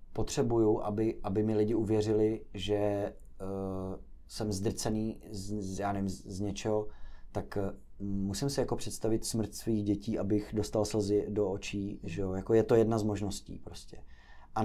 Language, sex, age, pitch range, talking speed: Czech, male, 30-49, 95-110 Hz, 170 wpm